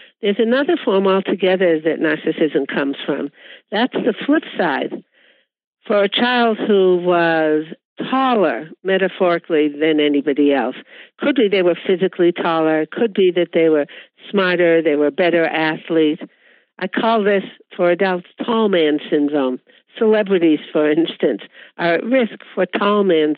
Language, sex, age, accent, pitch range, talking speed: English, female, 60-79, American, 165-215 Hz, 140 wpm